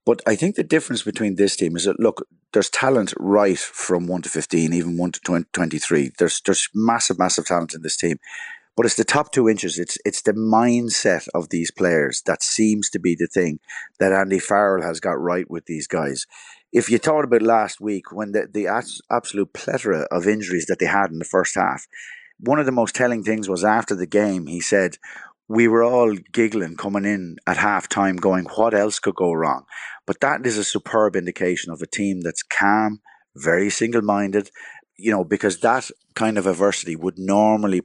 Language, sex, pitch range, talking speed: English, male, 90-110 Hz, 205 wpm